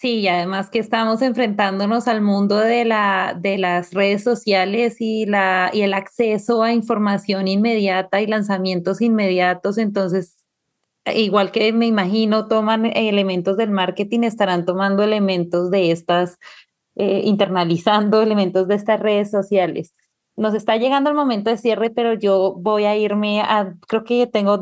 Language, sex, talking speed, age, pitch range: Spanish, female, 150 wpm, 20-39, 195-230 Hz